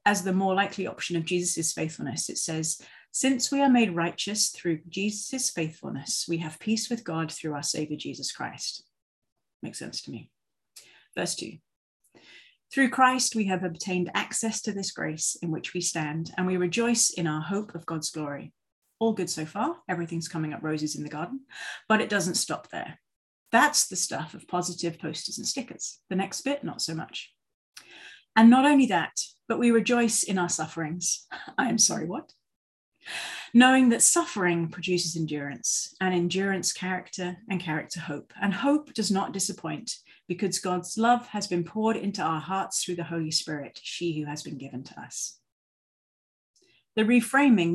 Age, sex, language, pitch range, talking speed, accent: 40-59, female, English, 165-225 Hz, 175 wpm, British